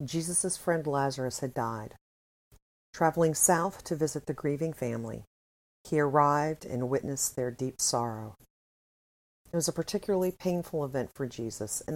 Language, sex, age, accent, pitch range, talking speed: English, female, 40-59, American, 125-165 Hz, 140 wpm